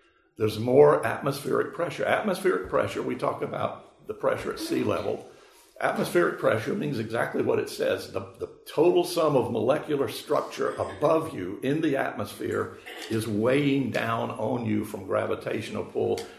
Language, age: English, 60-79